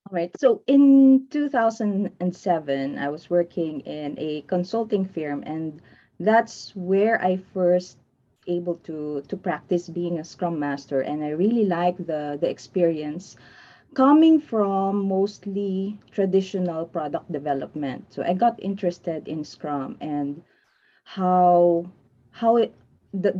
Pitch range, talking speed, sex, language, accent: 160-210 Hz, 125 wpm, female, English, Filipino